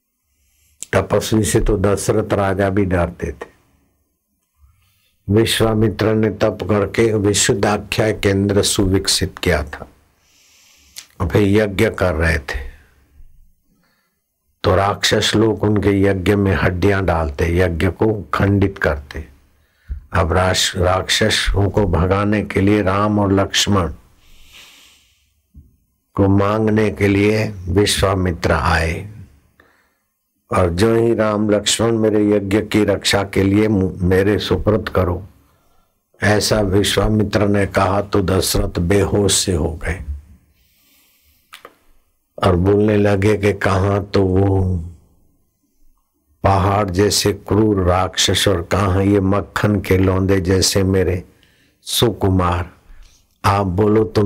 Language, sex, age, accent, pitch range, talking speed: Hindi, male, 60-79, native, 90-105 Hz, 110 wpm